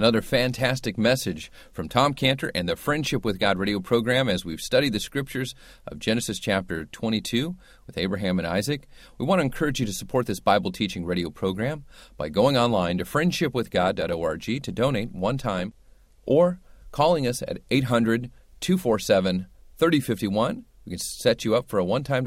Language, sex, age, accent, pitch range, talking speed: English, male, 40-59, American, 95-140 Hz, 160 wpm